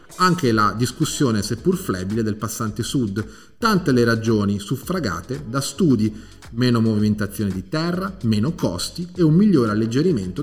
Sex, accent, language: male, native, Italian